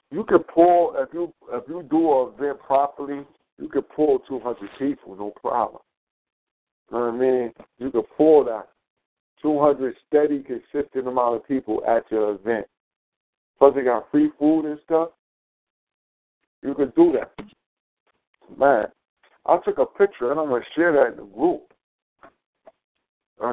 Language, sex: English, male